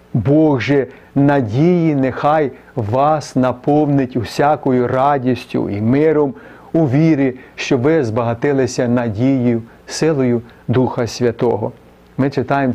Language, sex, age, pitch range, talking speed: Ukrainian, male, 40-59, 120-160 Hz, 95 wpm